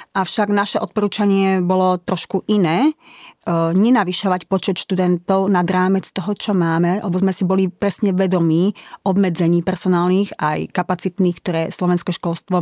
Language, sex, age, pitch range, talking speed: Slovak, female, 30-49, 170-195 Hz, 130 wpm